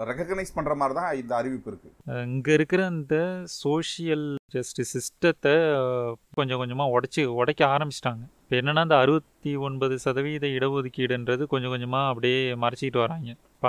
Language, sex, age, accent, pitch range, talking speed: Tamil, male, 30-49, native, 125-145 Hz, 135 wpm